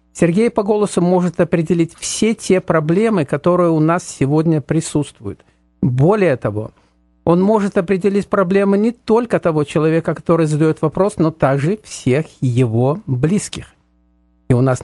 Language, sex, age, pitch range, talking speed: Russian, male, 50-69, 125-180 Hz, 140 wpm